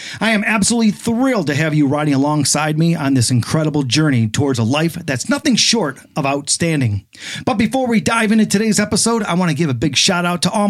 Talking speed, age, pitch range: 220 wpm, 40-59, 130-195 Hz